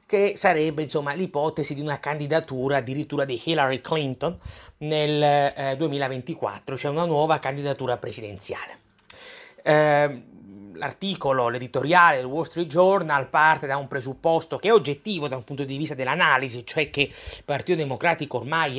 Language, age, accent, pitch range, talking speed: Italian, 30-49, native, 135-165 Hz, 135 wpm